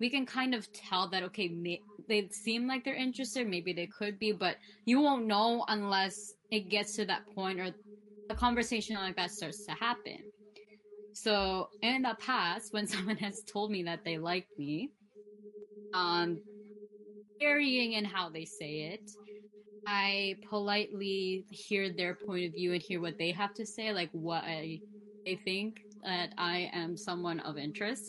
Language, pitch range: English, 185-210 Hz